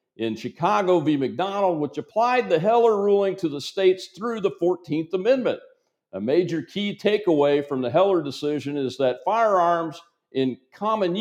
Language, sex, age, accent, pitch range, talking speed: English, male, 50-69, American, 125-175 Hz, 155 wpm